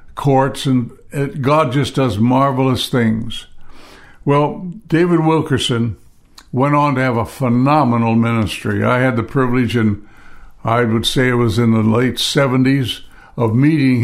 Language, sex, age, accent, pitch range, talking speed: English, male, 60-79, American, 115-135 Hz, 140 wpm